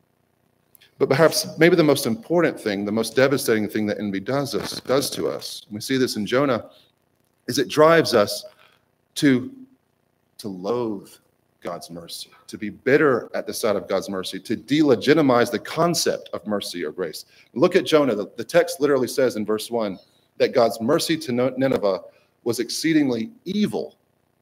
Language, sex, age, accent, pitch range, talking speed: English, male, 40-59, American, 110-155 Hz, 165 wpm